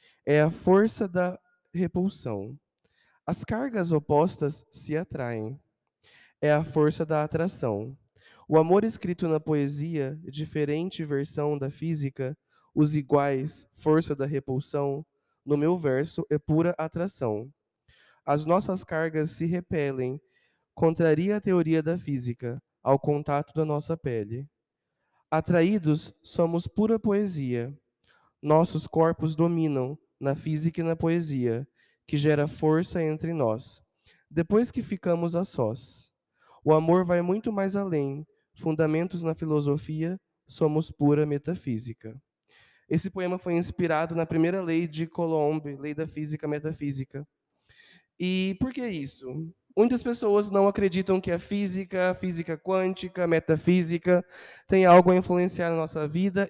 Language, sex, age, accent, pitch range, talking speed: Portuguese, male, 20-39, Brazilian, 145-180 Hz, 125 wpm